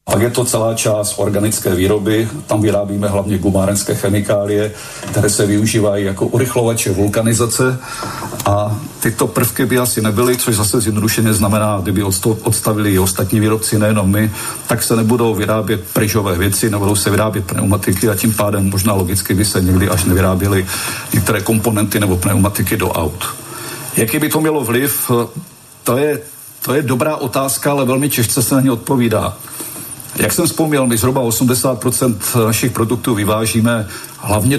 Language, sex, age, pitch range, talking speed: Slovak, male, 50-69, 105-125 Hz, 155 wpm